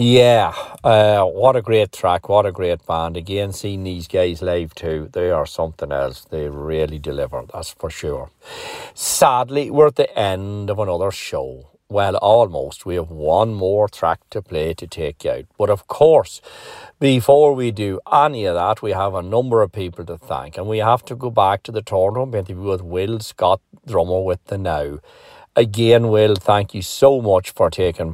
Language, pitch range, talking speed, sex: English, 95-120 Hz, 185 wpm, male